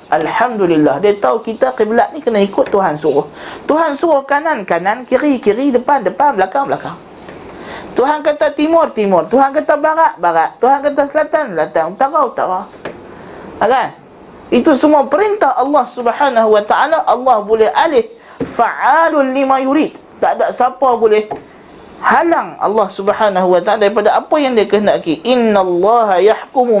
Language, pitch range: Malay, 205-290 Hz